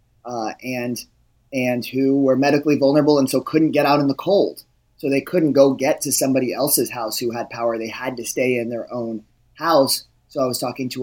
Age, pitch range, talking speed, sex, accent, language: 30-49, 120-135 Hz, 220 wpm, male, American, English